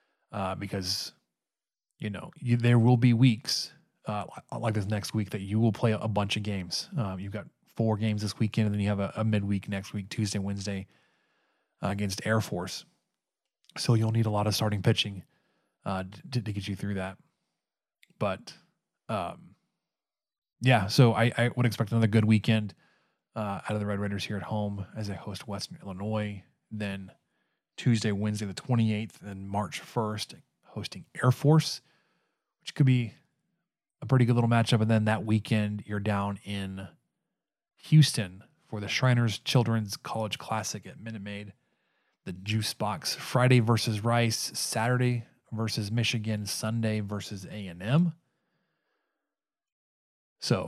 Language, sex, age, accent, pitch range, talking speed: English, male, 20-39, American, 100-120 Hz, 160 wpm